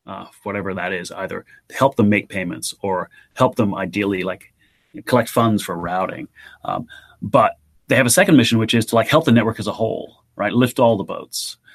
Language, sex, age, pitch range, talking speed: English, male, 30-49, 105-125 Hz, 205 wpm